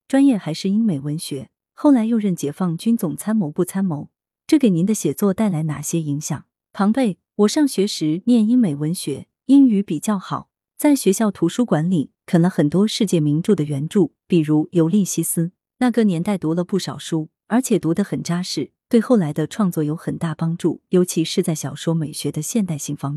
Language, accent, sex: Chinese, native, female